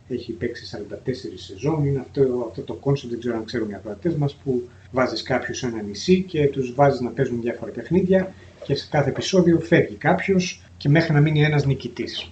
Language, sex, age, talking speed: Greek, male, 30-49, 195 wpm